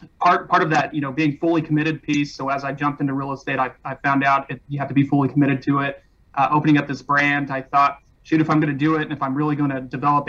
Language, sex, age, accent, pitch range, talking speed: English, male, 30-49, American, 135-150 Hz, 295 wpm